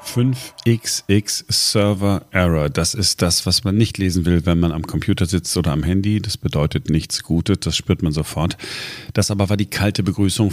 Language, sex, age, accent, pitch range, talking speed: German, male, 40-59, German, 80-105 Hz, 195 wpm